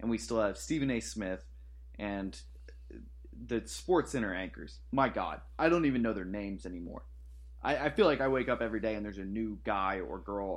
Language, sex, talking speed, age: English, male, 210 wpm, 20-39